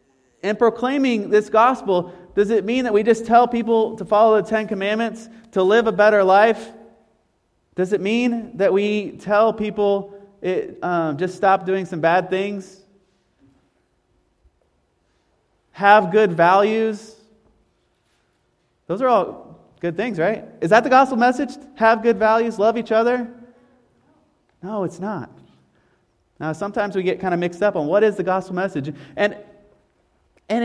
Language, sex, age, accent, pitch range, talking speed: English, male, 30-49, American, 185-235 Hz, 150 wpm